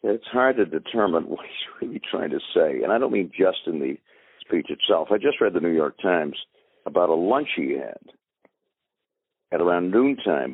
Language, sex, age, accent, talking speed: English, male, 60-79, American, 195 wpm